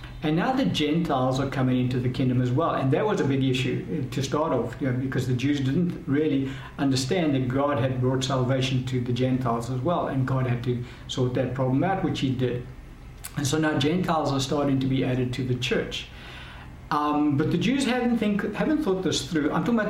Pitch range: 130-160 Hz